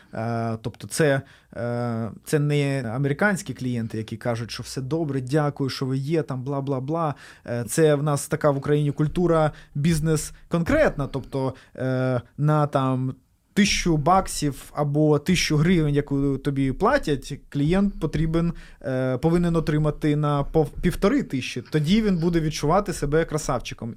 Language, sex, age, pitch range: Ukrainian, male, 20-39, 135-170 Hz